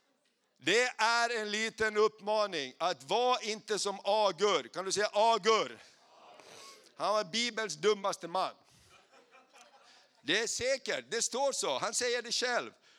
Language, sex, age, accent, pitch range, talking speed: Swedish, male, 50-69, native, 165-215 Hz, 135 wpm